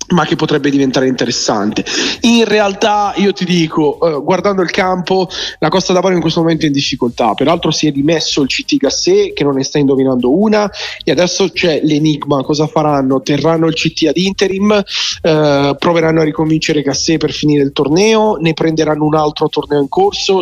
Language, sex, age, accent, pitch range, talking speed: Italian, male, 30-49, native, 150-195 Hz, 185 wpm